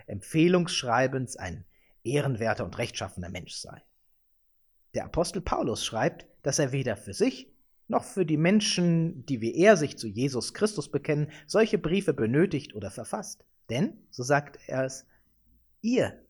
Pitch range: 110-175 Hz